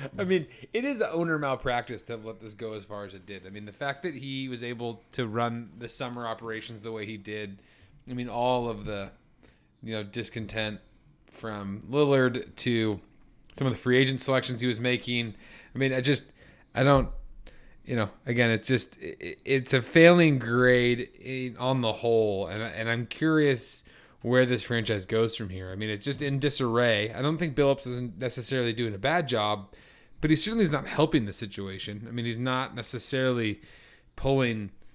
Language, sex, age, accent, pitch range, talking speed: English, male, 30-49, American, 110-130 Hz, 190 wpm